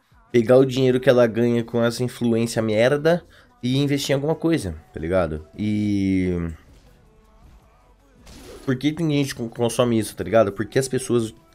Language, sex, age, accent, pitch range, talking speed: Portuguese, male, 20-39, Brazilian, 110-140 Hz, 160 wpm